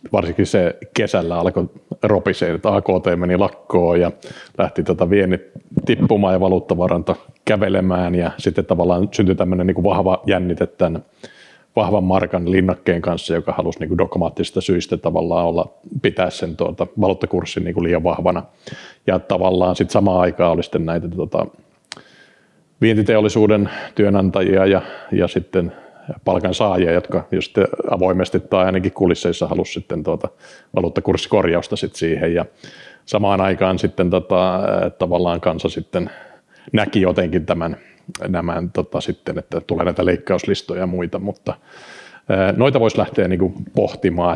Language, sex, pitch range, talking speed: Finnish, male, 90-100 Hz, 130 wpm